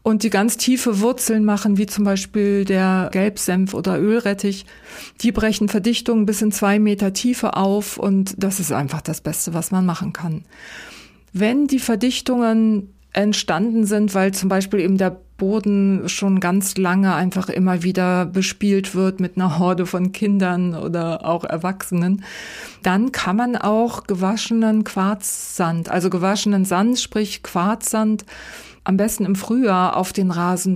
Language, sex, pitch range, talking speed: German, female, 185-220 Hz, 150 wpm